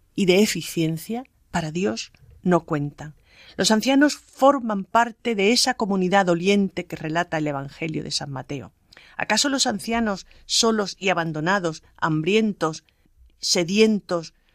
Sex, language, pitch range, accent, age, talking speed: female, Spanish, 160-215 Hz, Spanish, 40-59, 125 wpm